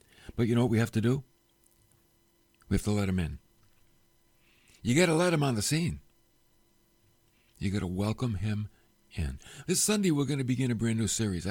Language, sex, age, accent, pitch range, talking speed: English, male, 60-79, American, 110-135 Hz, 200 wpm